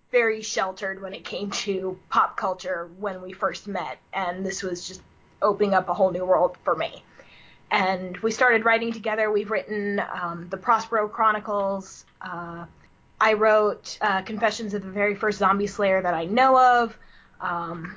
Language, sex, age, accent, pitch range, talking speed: English, female, 20-39, American, 190-230 Hz, 170 wpm